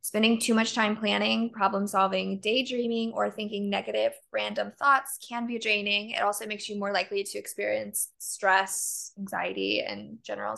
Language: English